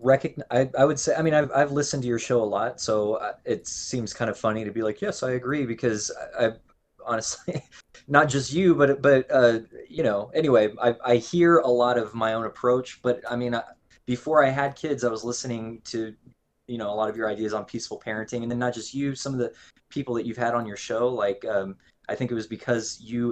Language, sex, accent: English, male, American